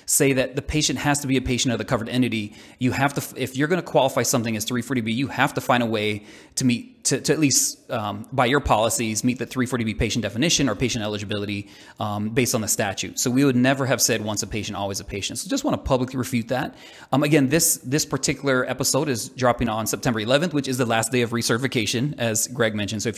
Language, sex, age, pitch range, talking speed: English, male, 30-49, 115-135 Hz, 245 wpm